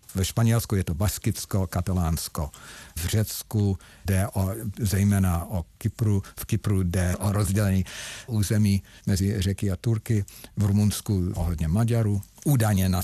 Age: 50-69